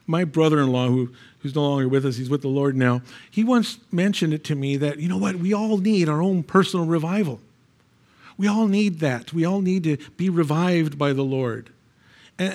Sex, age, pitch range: male, 50-69, 135-175 Hz